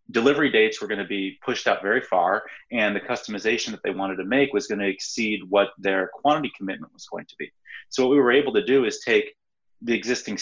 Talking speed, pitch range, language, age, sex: 235 wpm, 100-115 Hz, English, 30-49, male